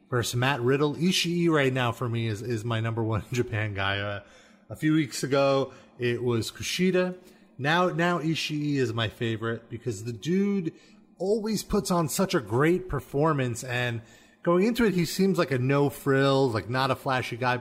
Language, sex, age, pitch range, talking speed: English, male, 30-49, 120-175 Hz, 180 wpm